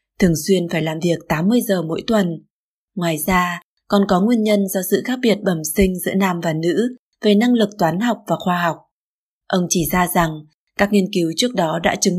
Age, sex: 20-39, female